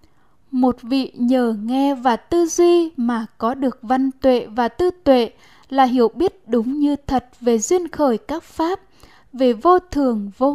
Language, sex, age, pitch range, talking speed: Vietnamese, female, 10-29, 240-285 Hz, 170 wpm